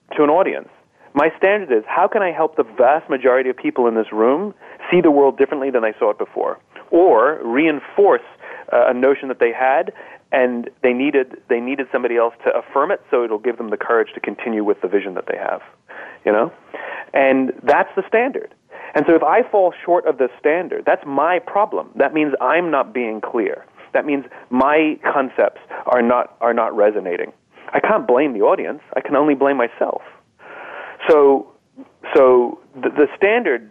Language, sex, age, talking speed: English, male, 30-49, 185 wpm